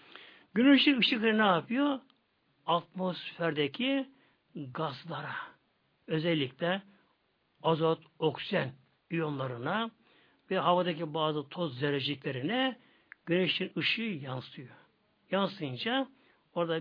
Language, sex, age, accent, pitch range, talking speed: Turkish, male, 60-79, native, 155-225 Hz, 70 wpm